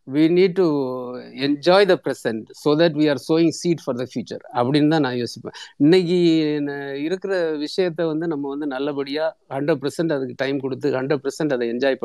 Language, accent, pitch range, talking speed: Tamil, native, 135-170 Hz, 190 wpm